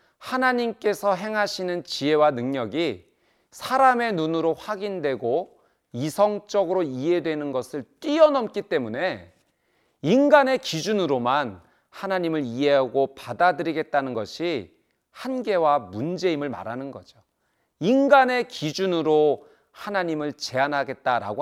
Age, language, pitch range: 40-59, Korean, 135-210 Hz